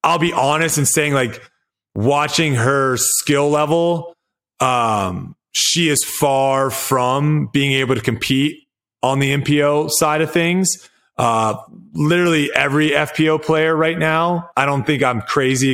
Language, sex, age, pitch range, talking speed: English, male, 30-49, 125-150 Hz, 140 wpm